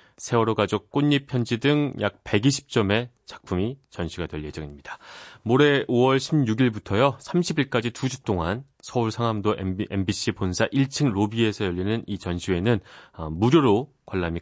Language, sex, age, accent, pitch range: Korean, male, 30-49, native, 95-140 Hz